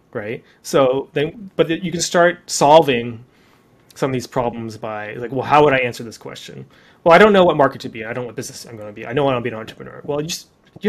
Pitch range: 125-170 Hz